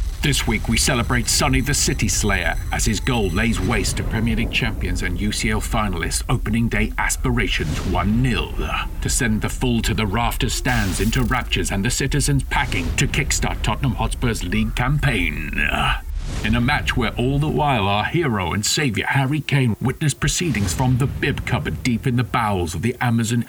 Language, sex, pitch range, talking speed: English, male, 95-125 Hz, 180 wpm